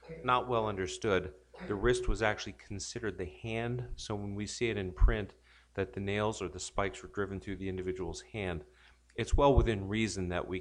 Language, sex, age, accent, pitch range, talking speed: English, male, 40-59, American, 90-105 Hz, 200 wpm